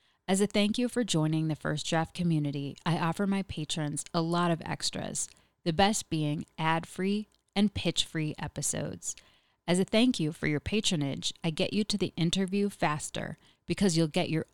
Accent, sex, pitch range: American, female, 150-185 Hz